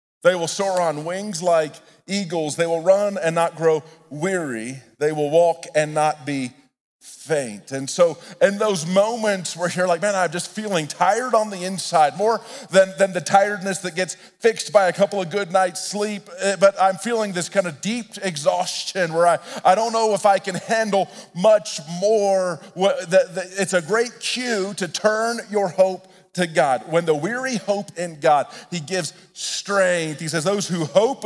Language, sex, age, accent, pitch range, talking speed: English, male, 40-59, American, 175-220 Hz, 180 wpm